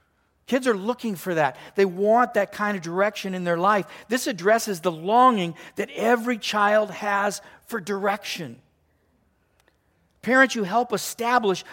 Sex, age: male, 50-69